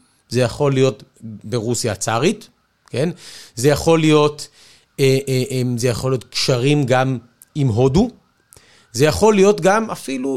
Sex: male